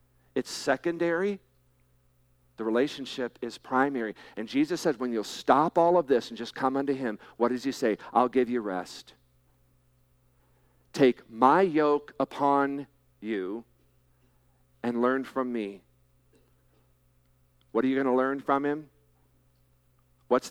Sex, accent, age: male, American, 50-69